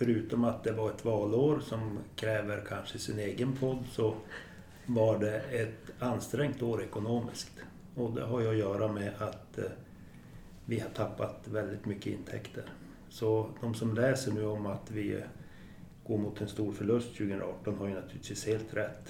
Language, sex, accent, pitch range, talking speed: Swedish, male, native, 100-115 Hz, 165 wpm